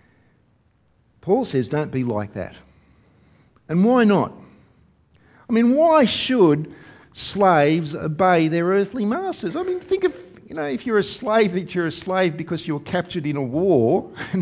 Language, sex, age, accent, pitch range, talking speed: English, male, 50-69, Australian, 110-170 Hz, 165 wpm